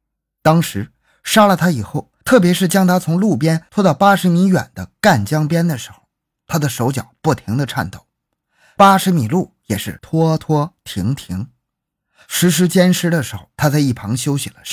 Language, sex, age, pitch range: Chinese, male, 20-39, 120-175 Hz